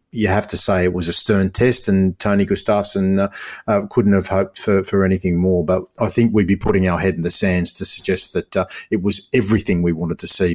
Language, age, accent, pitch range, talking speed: English, 40-59, Australian, 90-105 Hz, 245 wpm